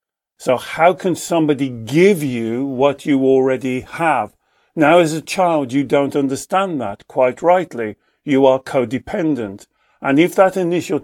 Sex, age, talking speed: male, 50-69, 145 wpm